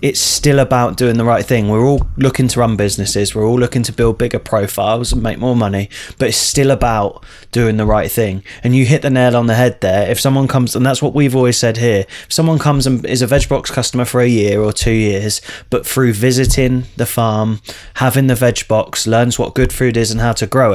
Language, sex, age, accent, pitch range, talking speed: English, male, 20-39, British, 110-125 Hz, 245 wpm